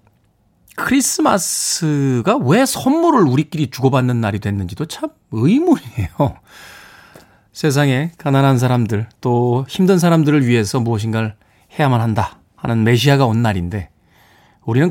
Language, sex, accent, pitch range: Korean, male, native, 115-175 Hz